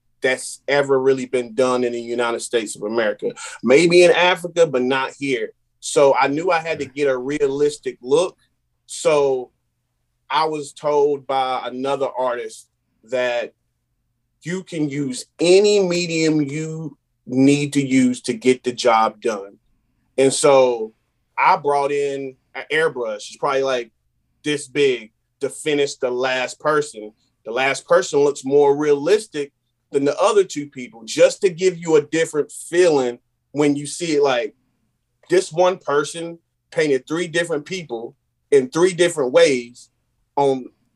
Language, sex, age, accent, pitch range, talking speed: English, male, 30-49, American, 125-170 Hz, 150 wpm